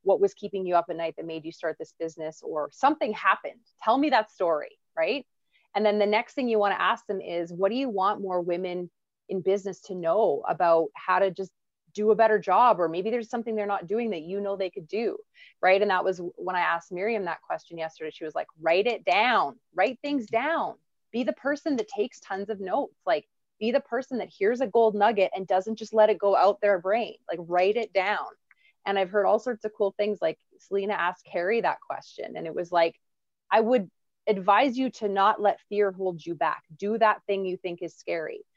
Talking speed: 230 wpm